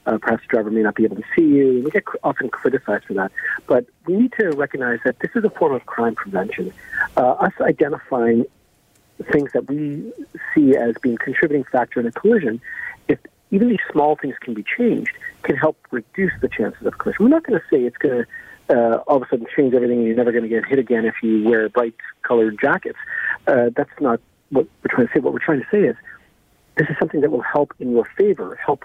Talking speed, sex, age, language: 235 wpm, male, 50-69, English